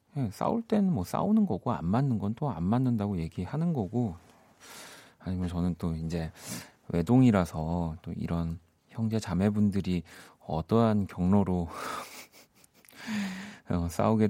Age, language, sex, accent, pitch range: 40-59, Korean, male, native, 90-130 Hz